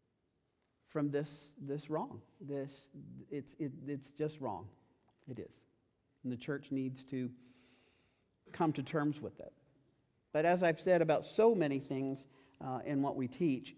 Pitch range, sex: 125-145 Hz, male